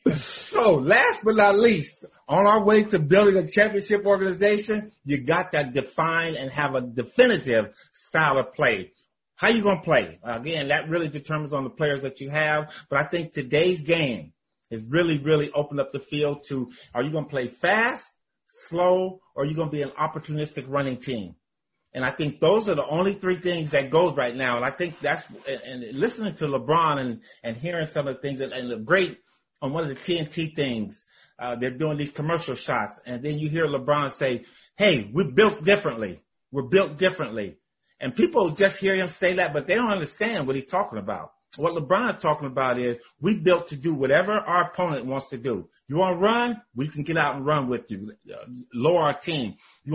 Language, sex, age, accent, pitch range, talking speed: English, male, 30-49, American, 140-185 Hz, 210 wpm